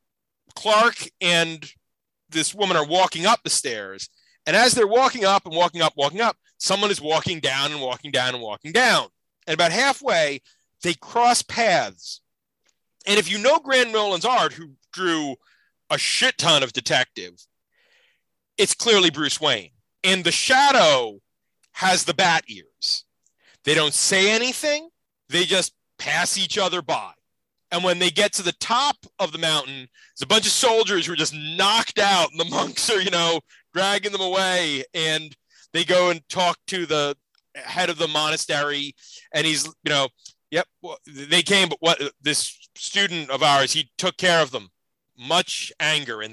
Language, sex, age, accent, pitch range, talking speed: English, male, 30-49, American, 155-205 Hz, 170 wpm